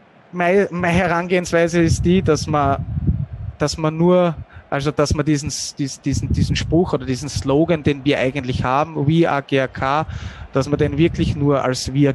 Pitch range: 125-145 Hz